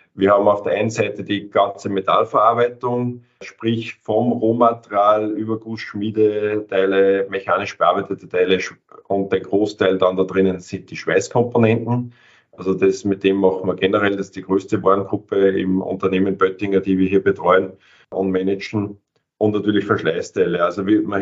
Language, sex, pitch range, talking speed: German, male, 95-115 Hz, 145 wpm